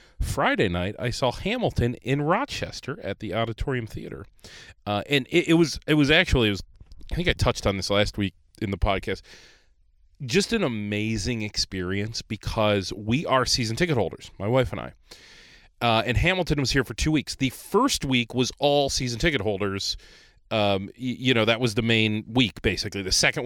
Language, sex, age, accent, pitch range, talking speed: English, male, 40-59, American, 100-135 Hz, 185 wpm